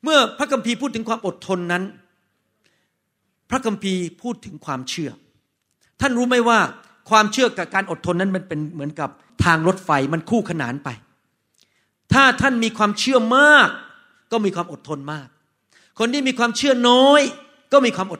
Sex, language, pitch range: male, Thai, 175-245 Hz